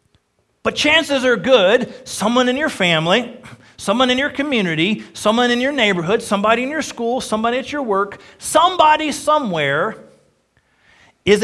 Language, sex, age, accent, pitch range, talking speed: English, male, 40-59, American, 185-255 Hz, 140 wpm